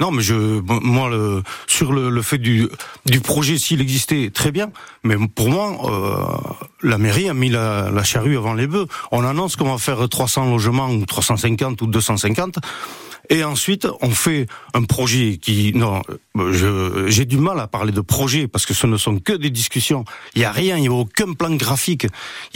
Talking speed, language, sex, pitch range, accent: 200 wpm, French, male, 110-140 Hz, French